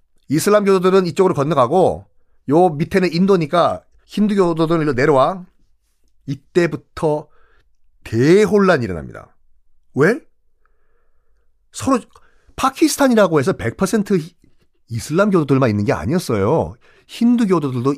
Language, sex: Korean, male